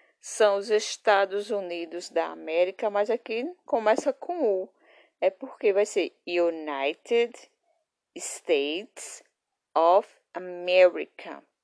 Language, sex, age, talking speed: Portuguese, female, 20-39, 100 wpm